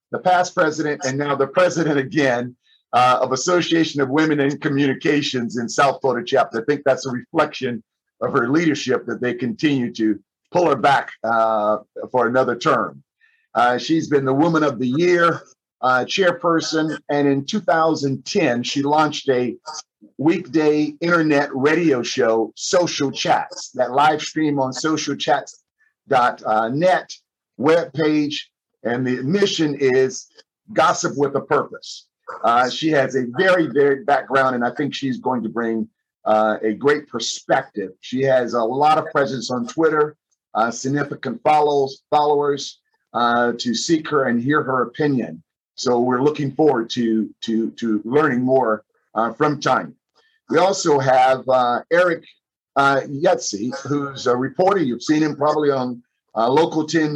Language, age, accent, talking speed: English, 50-69, American, 150 wpm